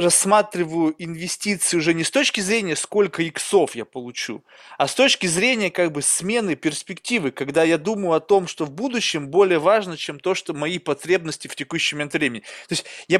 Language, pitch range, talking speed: Russian, 155-210 Hz, 175 wpm